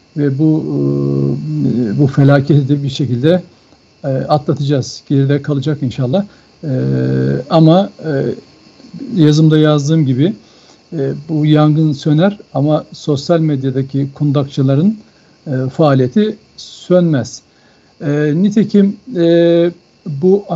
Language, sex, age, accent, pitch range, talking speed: Turkish, male, 60-79, native, 145-180 Hz, 75 wpm